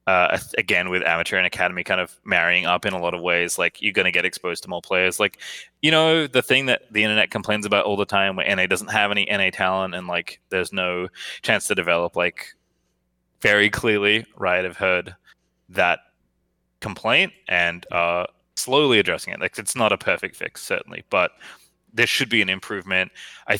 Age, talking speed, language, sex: 20-39, 195 wpm, English, male